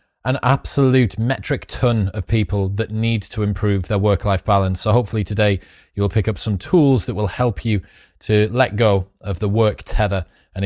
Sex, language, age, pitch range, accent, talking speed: male, English, 20-39, 100-125 Hz, British, 185 wpm